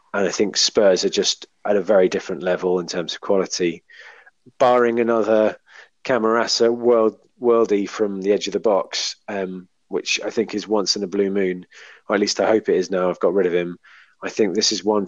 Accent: British